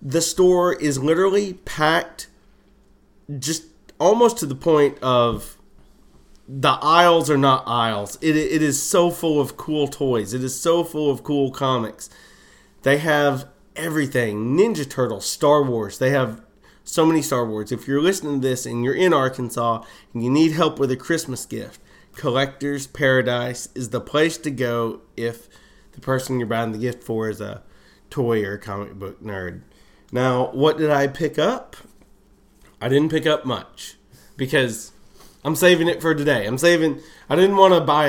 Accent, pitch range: American, 115-150 Hz